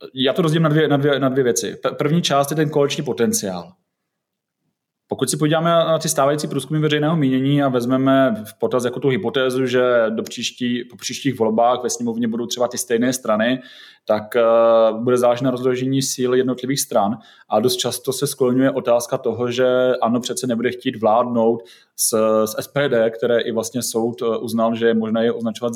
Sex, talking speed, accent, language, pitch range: male, 190 wpm, native, Czech, 115-130 Hz